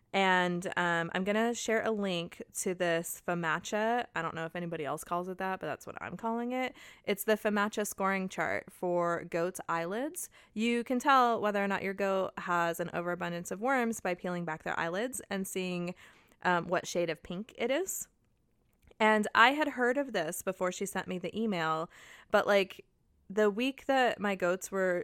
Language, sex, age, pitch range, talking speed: English, female, 20-39, 170-205 Hz, 195 wpm